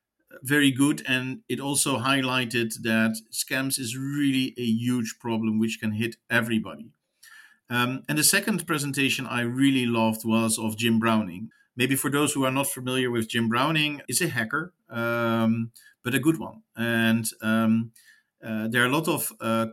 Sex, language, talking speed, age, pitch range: male, English, 170 wpm, 50-69, 110-130 Hz